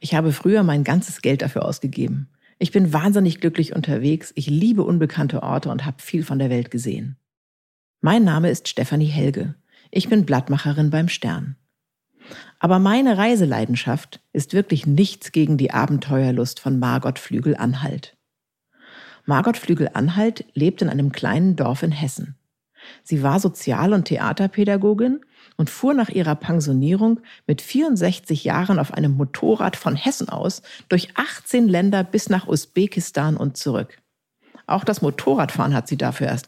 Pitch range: 145-195 Hz